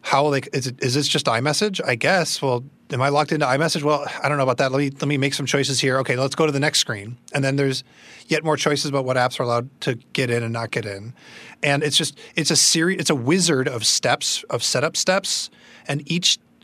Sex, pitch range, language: male, 125-150 Hz, English